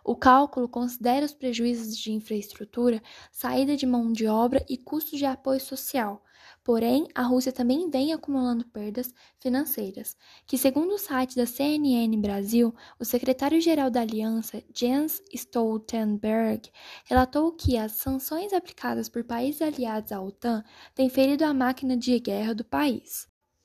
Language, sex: Portuguese, female